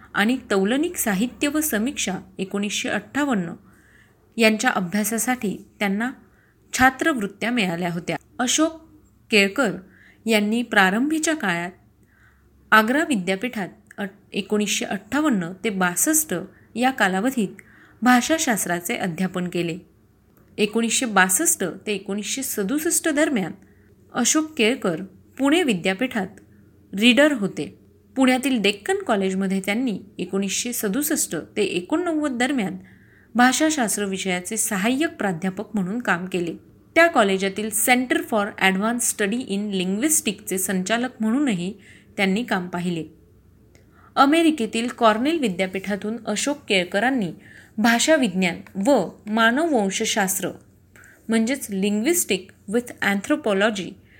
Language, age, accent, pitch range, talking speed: Marathi, 30-49, native, 190-250 Hz, 90 wpm